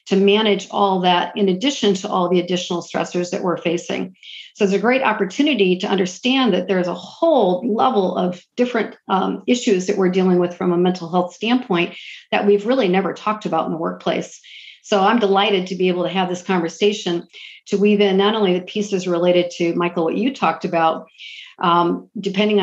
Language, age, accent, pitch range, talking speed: English, 50-69, American, 180-205 Hz, 195 wpm